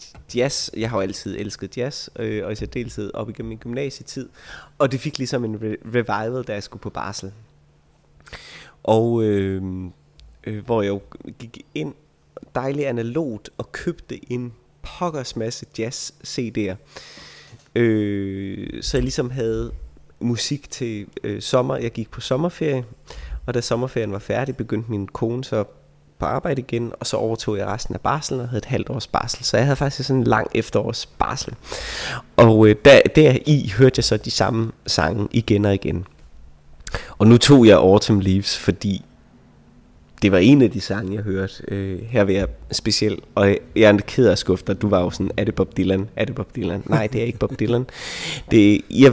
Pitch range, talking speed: 100-125 Hz, 180 wpm